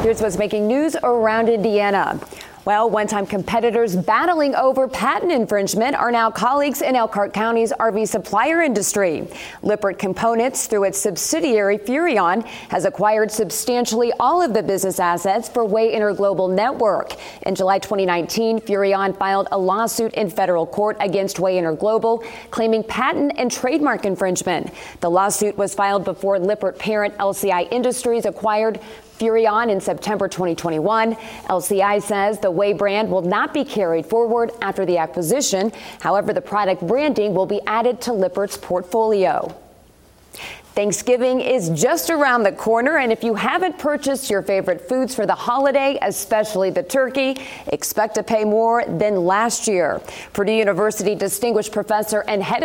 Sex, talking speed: female, 145 wpm